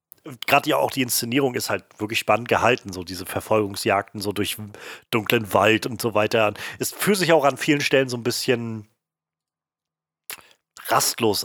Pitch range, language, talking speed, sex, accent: 100-125 Hz, German, 160 wpm, male, German